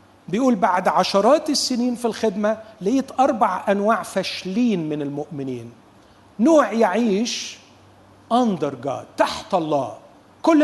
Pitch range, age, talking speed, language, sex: 170-245 Hz, 40-59, 100 wpm, Persian, male